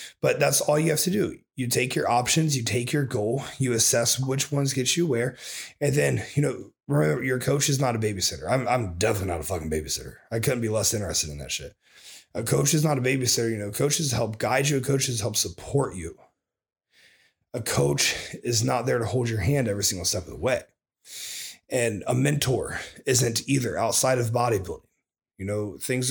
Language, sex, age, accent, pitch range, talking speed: English, male, 30-49, American, 100-130 Hz, 205 wpm